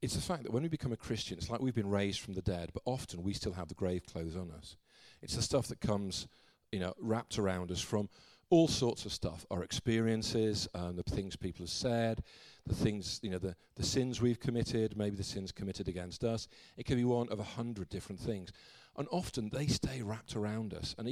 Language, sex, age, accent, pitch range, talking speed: English, male, 50-69, British, 95-120 Hz, 235 wpm